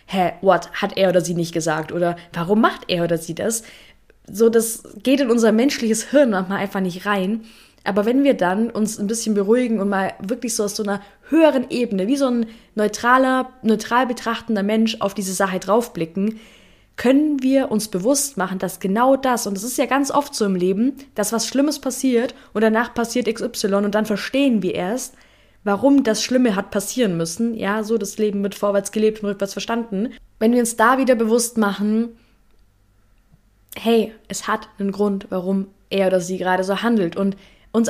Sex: female